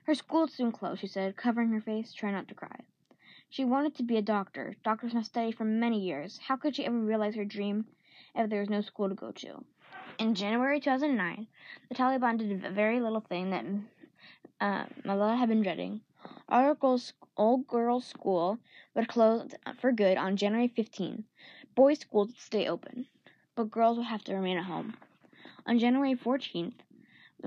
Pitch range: 200-245 Hz